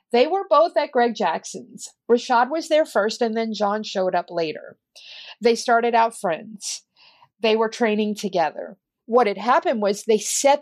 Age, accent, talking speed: 50-69, American, 170 wpm